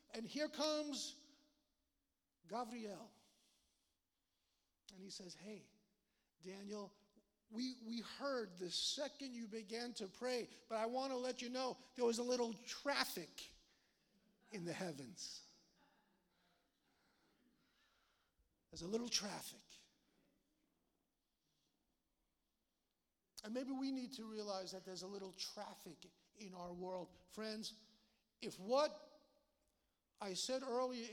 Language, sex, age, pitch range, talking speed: English, male, 50-69, 170-240 Hz, 110 wpm